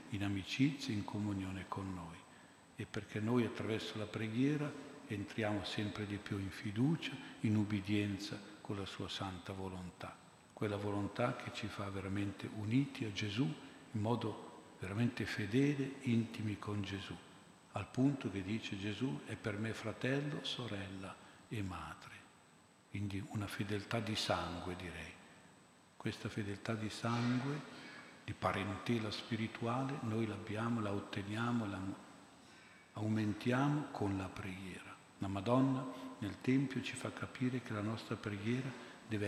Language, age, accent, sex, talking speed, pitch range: Italian, 50-69, native, male, 135 wpm, 100-120 Hz